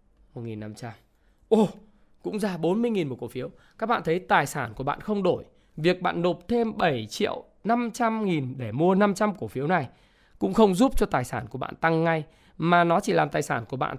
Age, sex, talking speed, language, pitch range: 20-39, male, 205 wpm, Vietnamese, 140-200 Hz